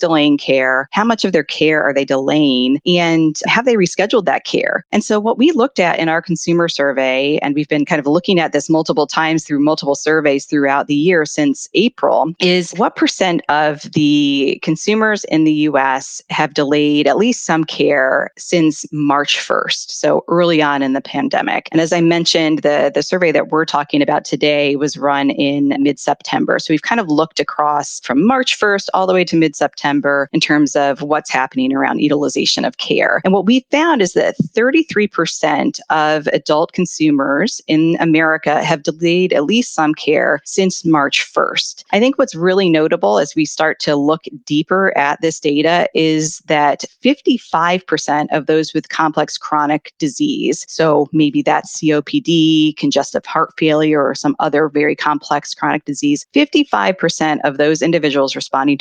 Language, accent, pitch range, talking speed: English, American, 145-175 Hz, 175 wpm